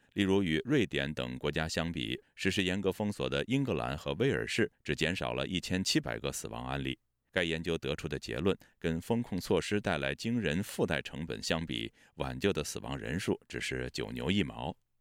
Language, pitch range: Chinese, 70-115 Hz